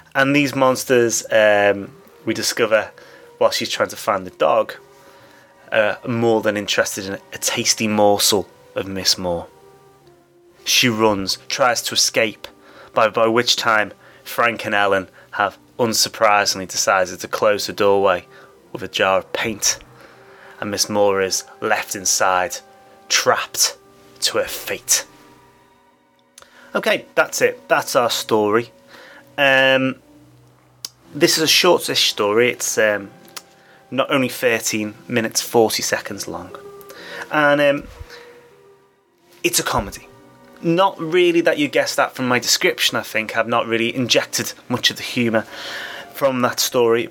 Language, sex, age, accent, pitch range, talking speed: English, male, 30-49, British, 105-160 Hz, 135 wpm